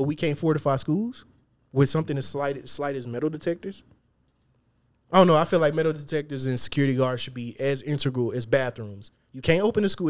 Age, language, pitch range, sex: 20-39, English, 125-160 Hz, male